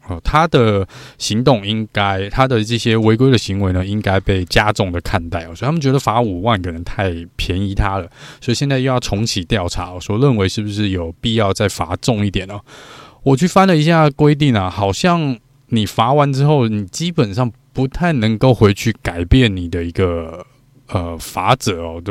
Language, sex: Chinese, male